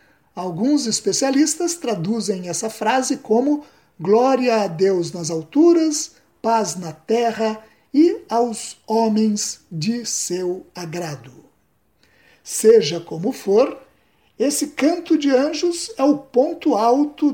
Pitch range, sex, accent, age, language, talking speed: 190-275 Hz, male, Brazilian, 50-69, Portuguese, 105 wpm